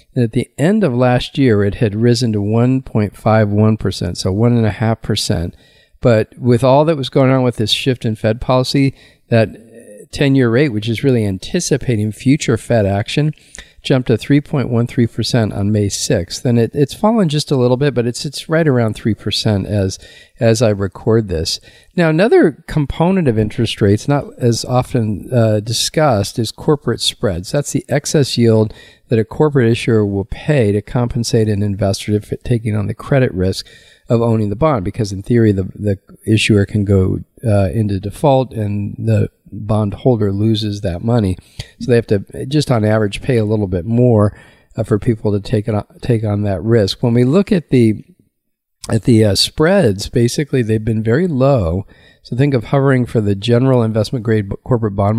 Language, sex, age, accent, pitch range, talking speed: English, male, 50-69, American, 105-130 Hz, 180 wpm